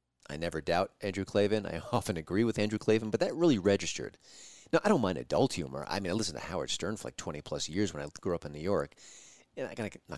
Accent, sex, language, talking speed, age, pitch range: American, male, English, 255 wpm, 30-49, 80-125 Hz